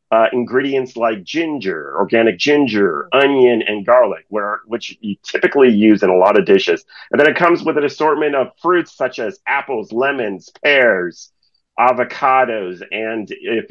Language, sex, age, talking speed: English, male, 40-59, 160 wpm